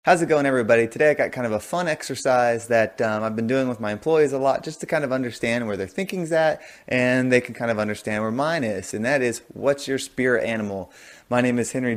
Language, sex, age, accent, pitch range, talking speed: English, male, 20-39, American, 105-130 Hz, 255 wpm